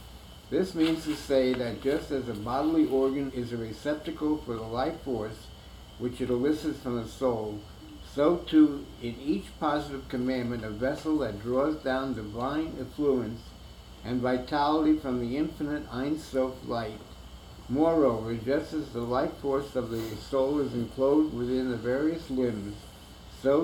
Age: 60-79